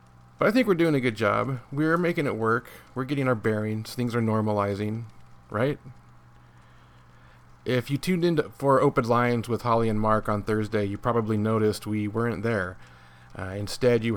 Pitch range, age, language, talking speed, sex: 100-125 Hz, 30-49, English, 180 wpm, male